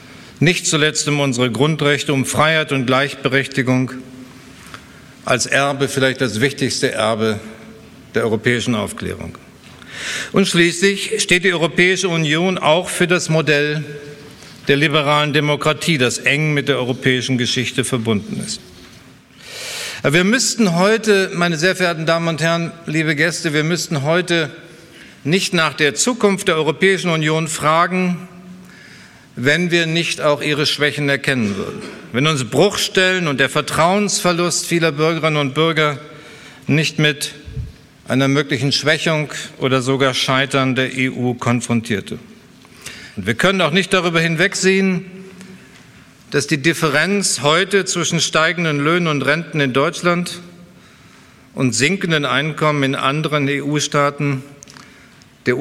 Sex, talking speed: male, 125 wpm